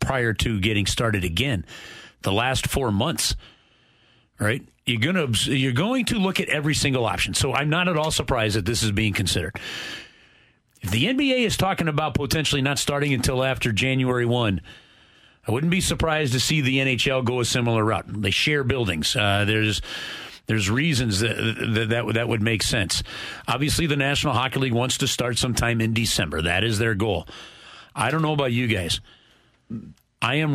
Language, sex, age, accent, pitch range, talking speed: English, male, 40-59, American, 110-140 Hz, 185 wpm